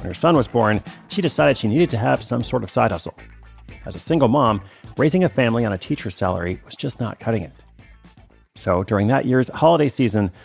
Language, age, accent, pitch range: English, 40-59, American, 105-135 Hz